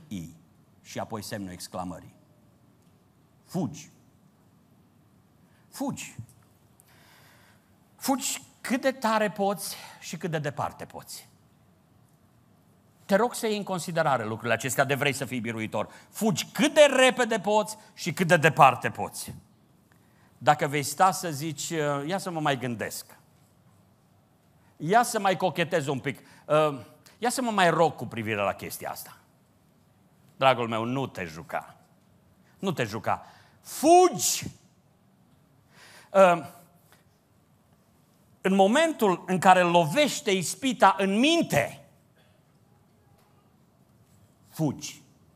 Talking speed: 110 wpm